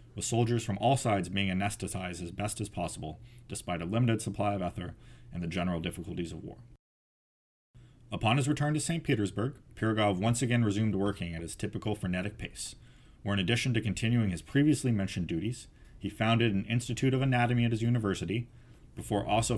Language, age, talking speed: English, 30-49, 180 wpm